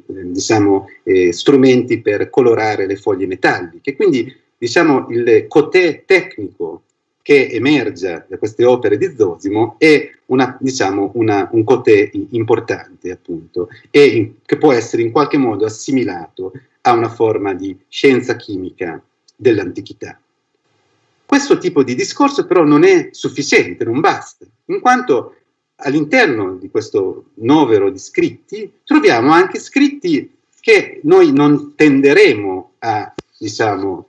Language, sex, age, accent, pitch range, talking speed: Italian, male, 40-59, native, 300-410 Hz, 125 wpm